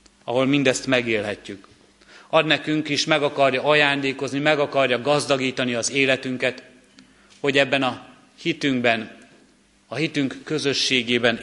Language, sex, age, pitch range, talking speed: Hungarian, male, 30-49, 115-140 Hz, 110 wpm